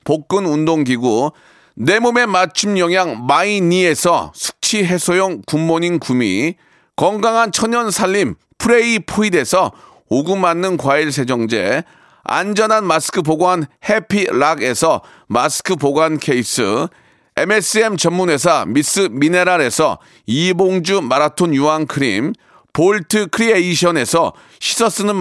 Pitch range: 160-210 Hz